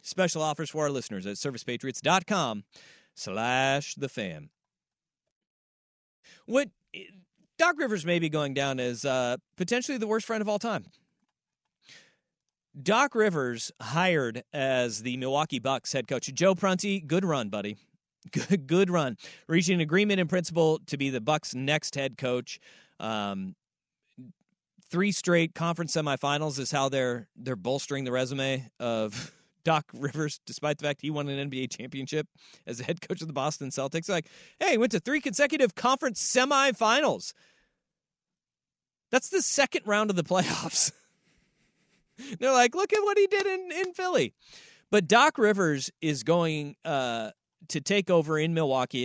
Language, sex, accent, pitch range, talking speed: English, male, American, 135-195 Hz, 150 wpm